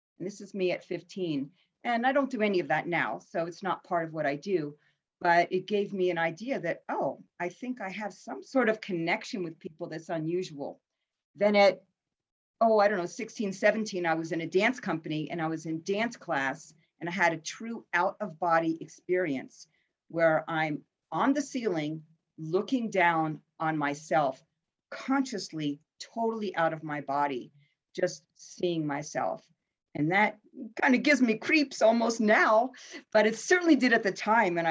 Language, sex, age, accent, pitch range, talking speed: English, female, 50-69, American, 160-215 Hz, 180 wpm